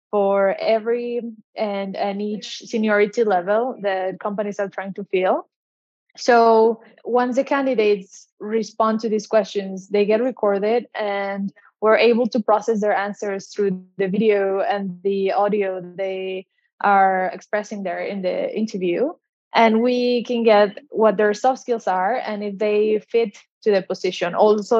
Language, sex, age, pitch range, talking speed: English, female, 20-39, 195-225 Hz, 150 wpm